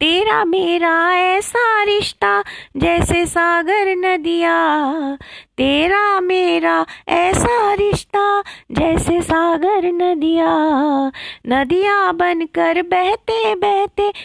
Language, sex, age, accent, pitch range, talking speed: Hindi, female, 30-49, native, 265-340 Hz, 80 wpm